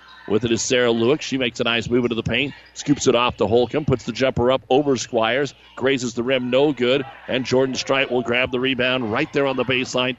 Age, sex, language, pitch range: 40-59, male, English, 115-135 Hz